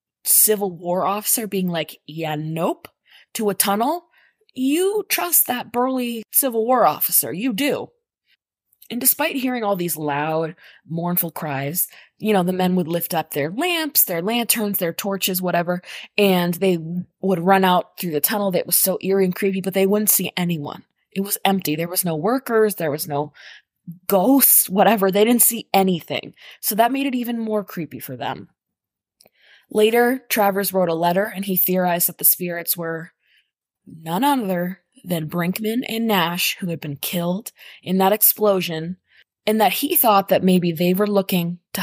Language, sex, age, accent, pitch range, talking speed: English, female, 20-39, American, 175-230 Hz, 170 wpm